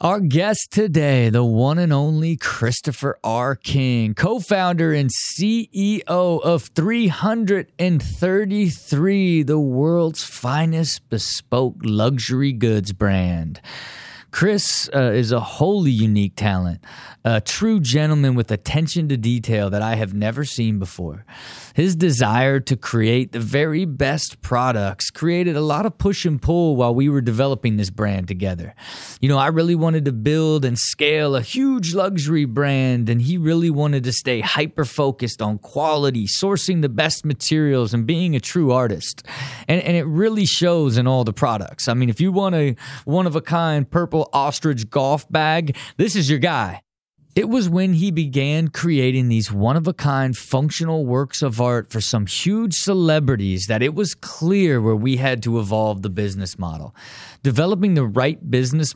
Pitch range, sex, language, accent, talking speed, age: 115-165 Hz, male, English, American, 155 wpm, 20-39